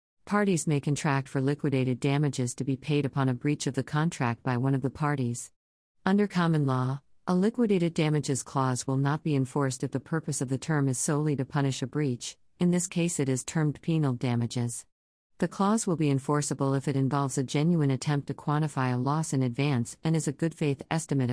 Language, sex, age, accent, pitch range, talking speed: English, female, 50-69, American, 130-160 Hz, 210 wpm